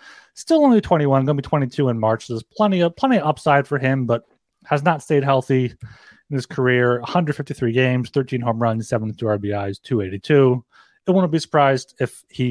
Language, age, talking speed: English, 30-49, 180 wpm